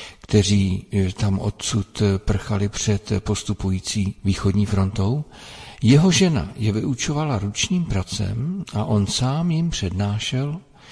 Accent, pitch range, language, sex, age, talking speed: native, 100-140 Hz, Czech, male, 50-69, 105 wpm